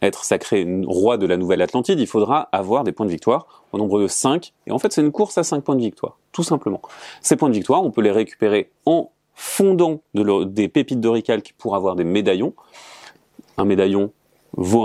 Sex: male